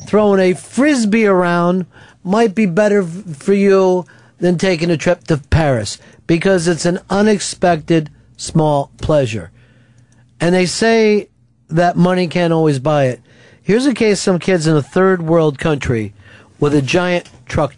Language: English